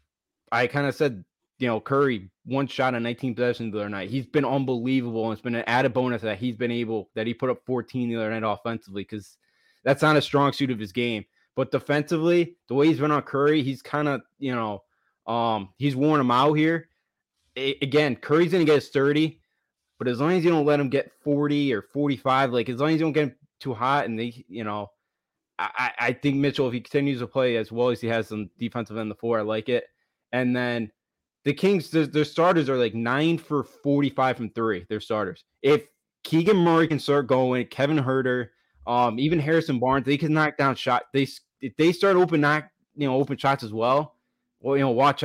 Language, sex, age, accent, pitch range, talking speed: English, male, 20-39, American, 115-145 Hz, 225 wpm